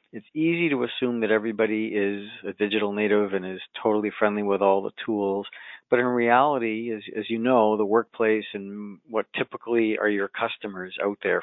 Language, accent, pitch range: English, American, 100-115 Hz